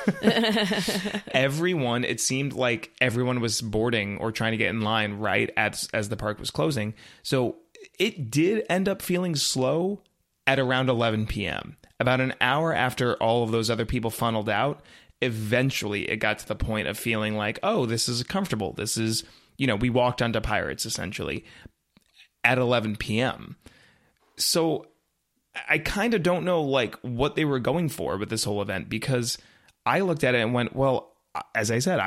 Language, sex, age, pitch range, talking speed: English, male, 30-49, 110-155 Hz, 175 wpm